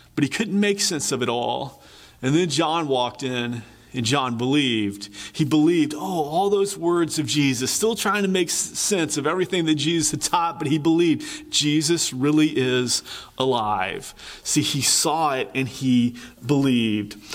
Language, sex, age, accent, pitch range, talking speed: English, male, 30-49, American, 130-165 Hz, 170 wpm